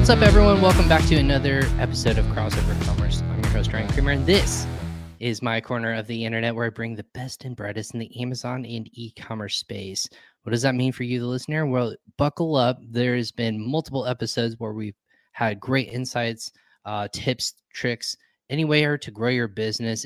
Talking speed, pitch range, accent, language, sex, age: 195 wpm, 110-125 Hz, American, English, male, 20-39